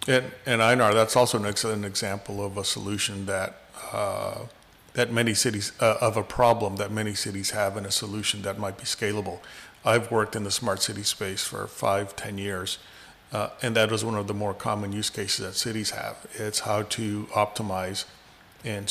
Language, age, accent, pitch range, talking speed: English, 40-59, American, 100-110 Hz, 195 wpm